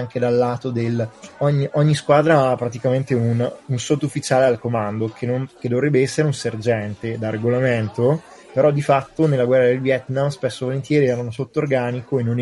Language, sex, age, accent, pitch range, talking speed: Italian, male, 20-39, native, 115-145 Hz, 190 wpm